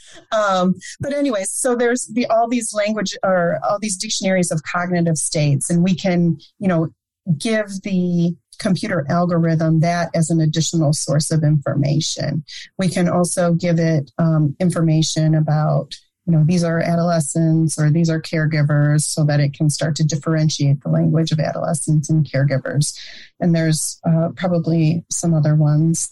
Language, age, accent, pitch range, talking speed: English, 30-49, American, 155-185 Hz, 160 wpm